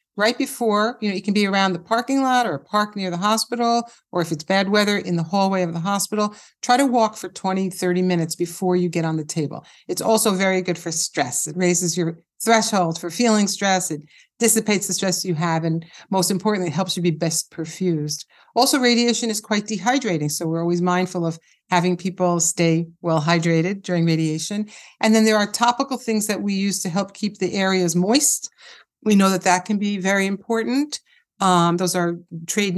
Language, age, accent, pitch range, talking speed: English, 50-69, American, 175-220 Hz, 205 wpm